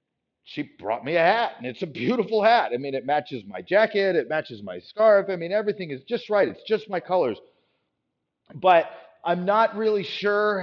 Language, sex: English, male